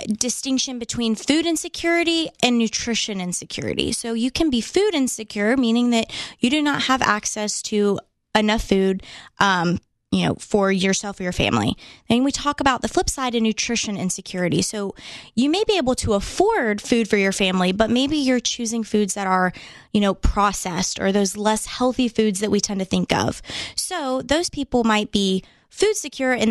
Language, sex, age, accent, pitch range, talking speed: English, female, 20-39, American, 195-255 Hz, 185 wpm